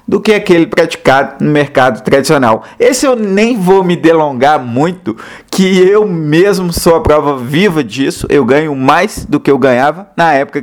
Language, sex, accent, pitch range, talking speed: Portuguese, male, Brazilian, 140-185 Hz, 175 wpm